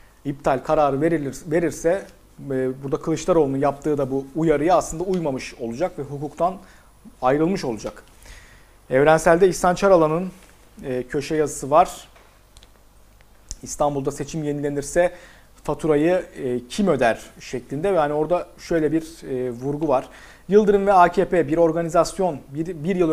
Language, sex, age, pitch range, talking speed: Turkish, male, 40-59, 140-170 Hz, 120 wpm